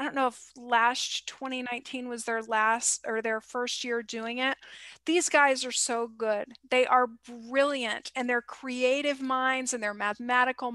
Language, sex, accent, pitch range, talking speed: English, female, American, 235-270 Hz, 170 wpm